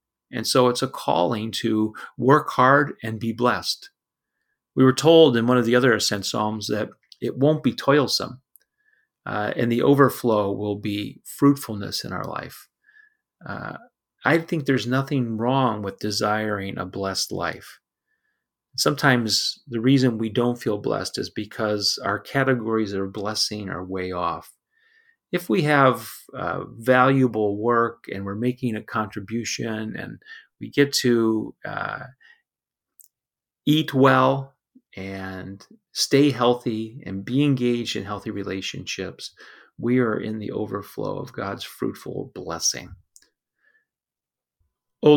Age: 40-59